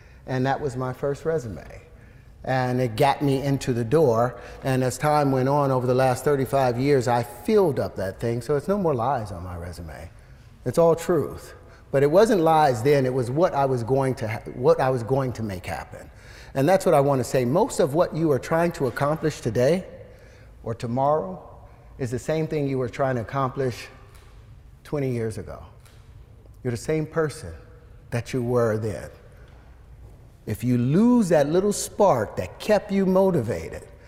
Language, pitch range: English, 115-150 Hz